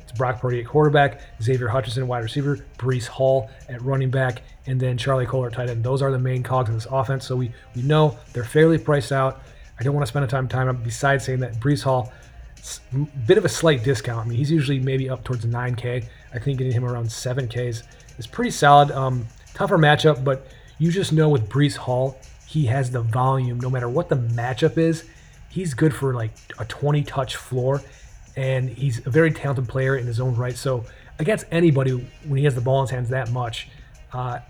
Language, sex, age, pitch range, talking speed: English, male, 30-49, 125-140 Hz, 215 wpm